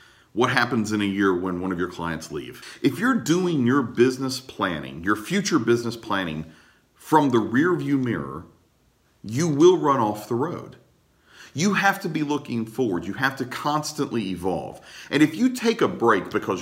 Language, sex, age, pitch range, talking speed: English, male, 40-59, 105-150 Hz, 175 wpm